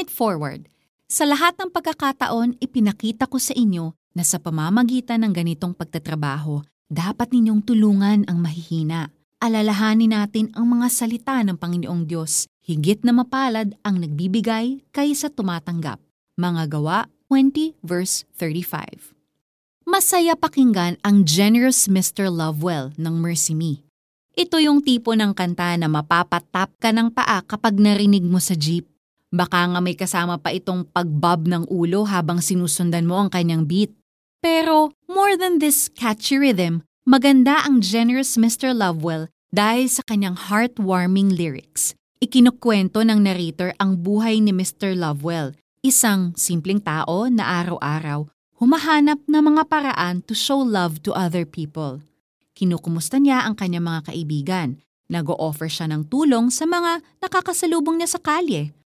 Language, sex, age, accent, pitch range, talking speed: Filipino, female, 20-39, native, 170-250 Hz, 135 wpm